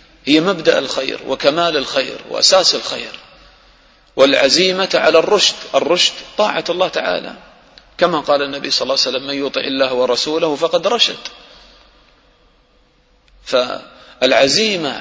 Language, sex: English, male